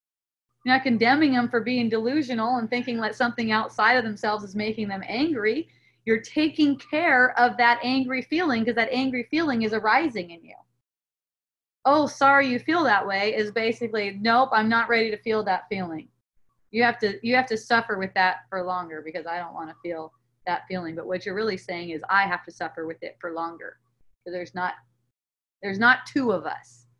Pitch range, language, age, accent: 180-235 Hz, English, 30-49, American